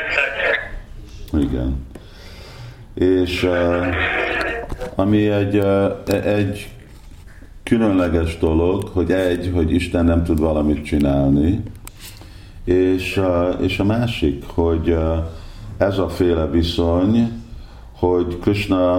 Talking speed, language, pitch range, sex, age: 80 wpm, Hungarian, 80-95 Hz, male, 50-69